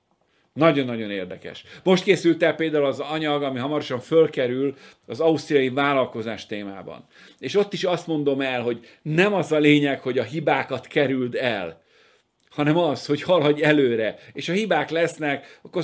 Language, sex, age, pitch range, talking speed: Hungarian, male, 50-69, 130-165 Hz, 155 wpm